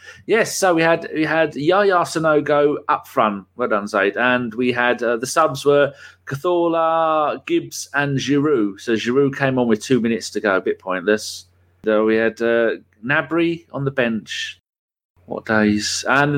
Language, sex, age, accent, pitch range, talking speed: English, male, 30-49, British, 105-150 Hz, 170 wpm